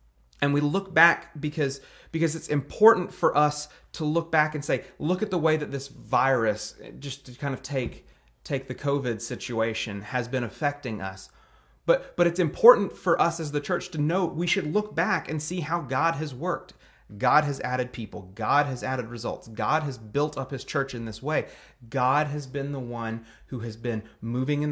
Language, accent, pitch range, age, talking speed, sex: English, American, 125-165 Hz, 30-49, 200 wpm, male